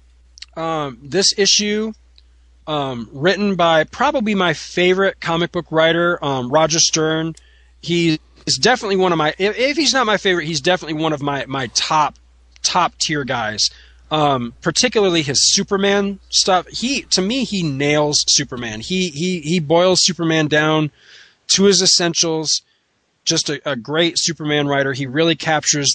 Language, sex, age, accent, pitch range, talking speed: English, male, 20-39, American, 125-170 Hz, 155 wpm